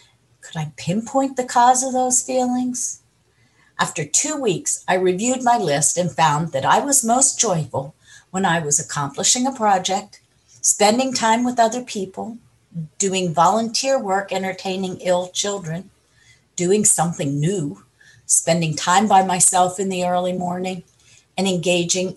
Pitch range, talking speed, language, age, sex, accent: 145-195 Hz, 140 wpm, English, 50-69, female, American